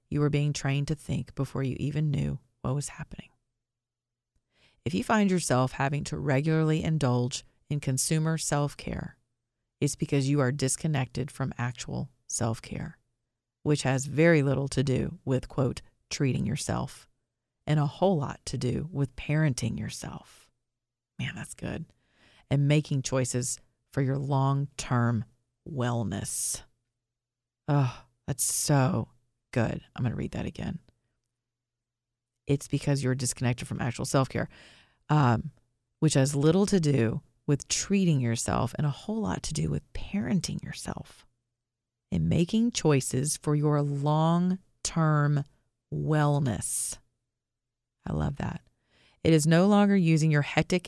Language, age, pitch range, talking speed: English, 40-59, 120-155 Hz, 130 wpm